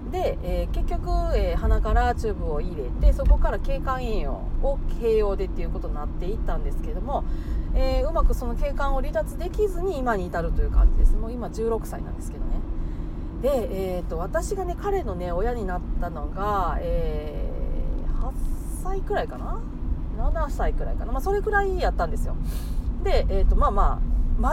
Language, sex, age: Japanese, female, 40-59